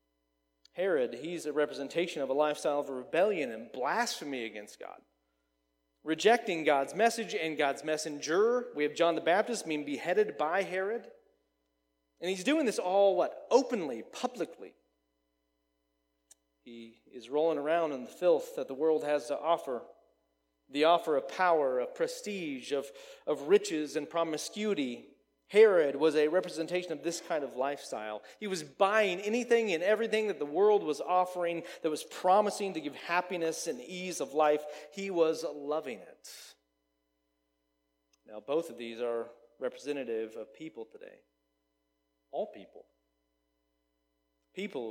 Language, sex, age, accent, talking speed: English, male, 30-49, American, 140 wpm